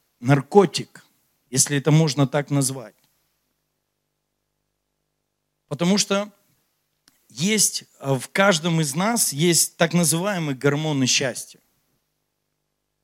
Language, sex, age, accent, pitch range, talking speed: Russian, male, 40-59, native, 145-200 Hz, 85 wpm